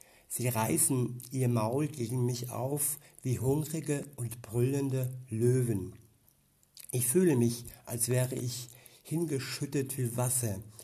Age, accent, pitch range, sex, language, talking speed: 60-79, German, 120-140 Hz, male, German, 115 wpm